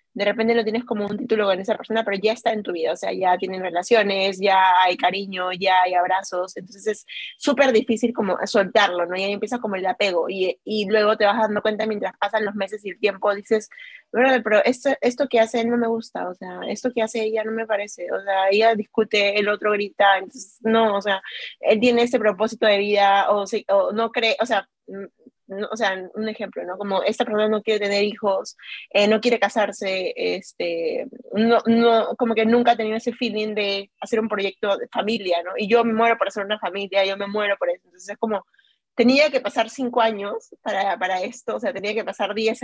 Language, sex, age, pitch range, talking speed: Spanish, female, 20-39, 200-235 Hz, 225 wpm